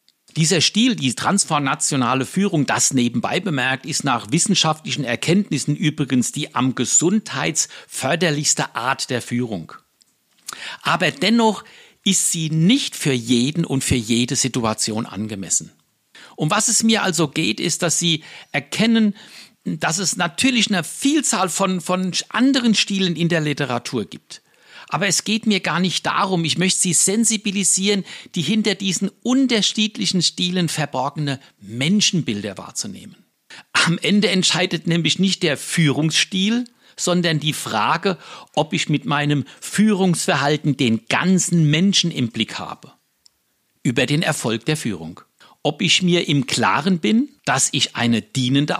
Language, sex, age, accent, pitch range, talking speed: German, male, 60-79, German, 135-195 Hz, 135 wpm